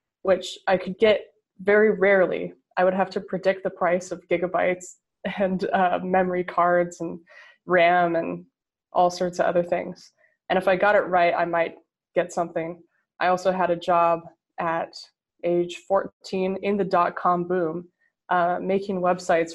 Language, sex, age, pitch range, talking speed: English, female, 20-39, 175-190 Hz, 160 wpm